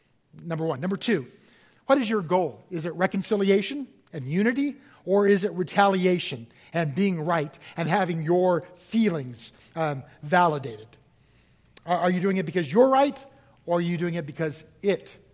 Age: 50-69